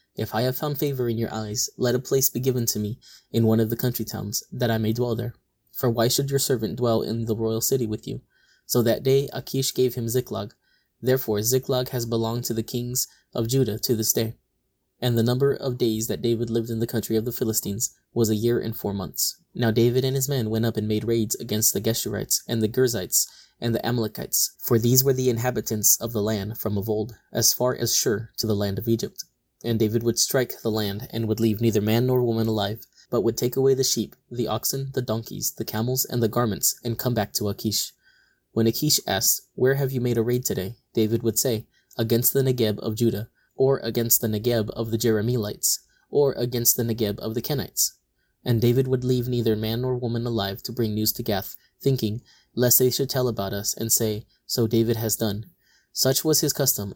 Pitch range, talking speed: 110-125 Hz, 225 wpm